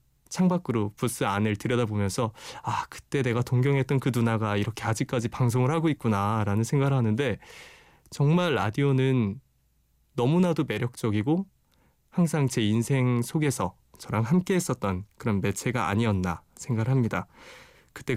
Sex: male